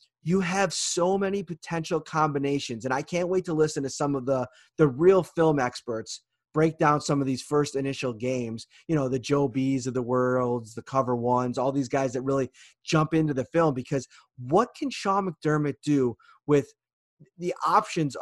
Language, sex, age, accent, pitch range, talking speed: English, male, 30-49, American, 135-165 Hz, 190 wpm